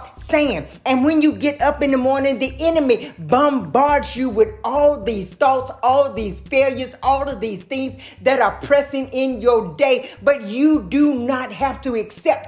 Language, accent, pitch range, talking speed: English, American, 235-300 Hz, 180 wpm